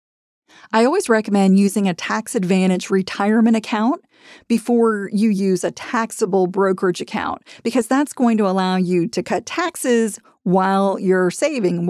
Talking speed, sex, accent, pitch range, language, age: 140 wpm, female, American, 185-230 Hz, English, 40-59